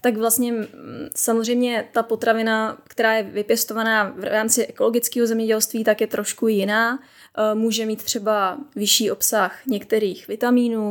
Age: 10-29